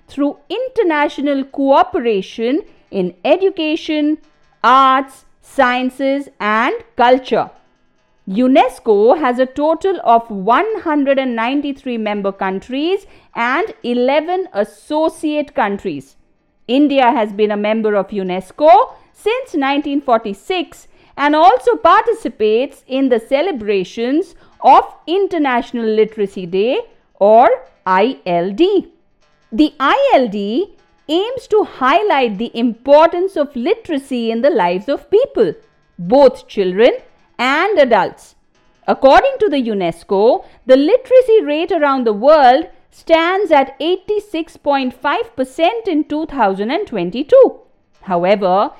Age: 50-69